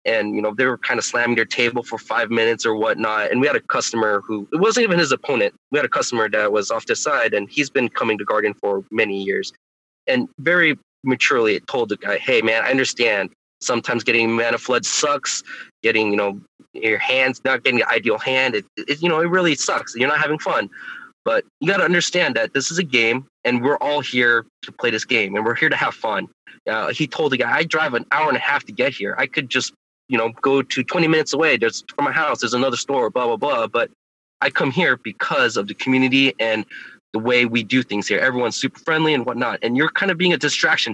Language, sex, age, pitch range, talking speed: English, male, 20-39, 115-160 Hz, 245 wpm